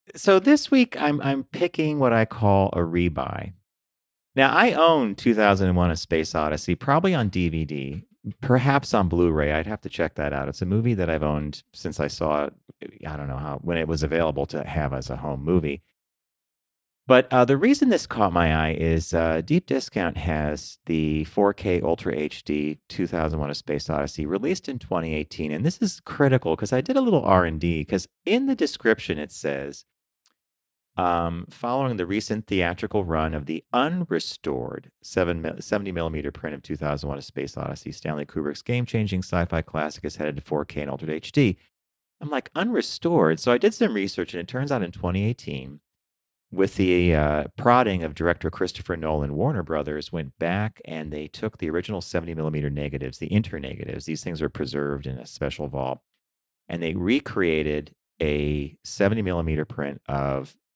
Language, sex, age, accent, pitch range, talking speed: English, male, 30-49, American, 75-105 Hz, 175 wpm